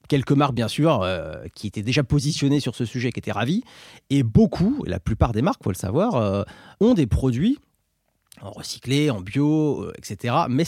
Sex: male